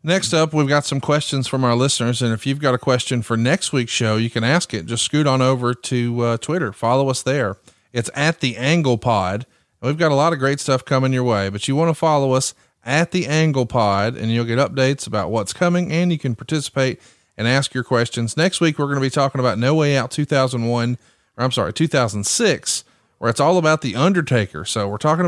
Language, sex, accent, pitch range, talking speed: English, male, American, 120-155 Hz, 235 wpm